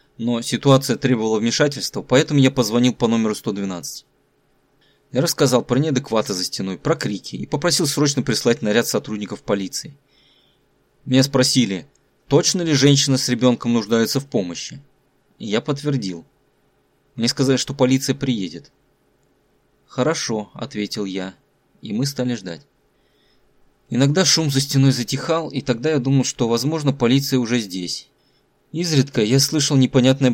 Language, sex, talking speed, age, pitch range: Russian, male, 135 wpm, 20-39, 115-140 Hz